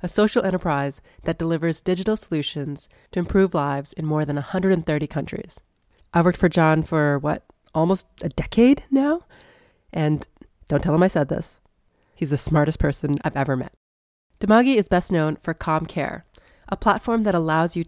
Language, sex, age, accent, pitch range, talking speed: English, female, 30-49, American, 150-195 Hz, 170 wpm